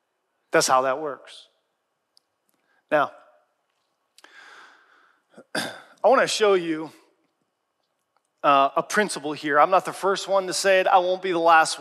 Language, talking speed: English, 135 wpm